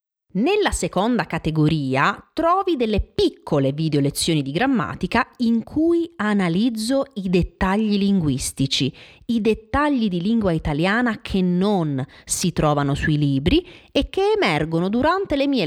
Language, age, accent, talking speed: Italian, 30-49, native, 125 wpm